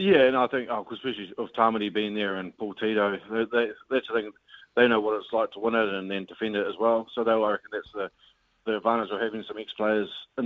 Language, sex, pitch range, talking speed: English, male, 100-115 Hz, 275 wpm